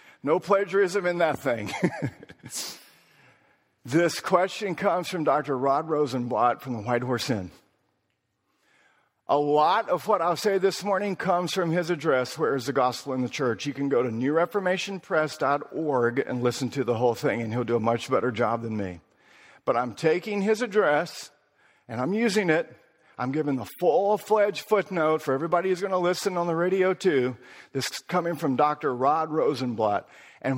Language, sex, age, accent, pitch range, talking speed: English, male, 50-69, American, 135-190 Hz, 175 wpm